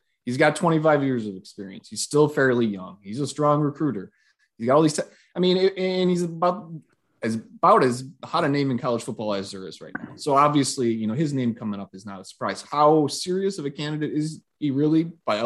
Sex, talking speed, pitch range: male, 230 wpm, 105-145 Hz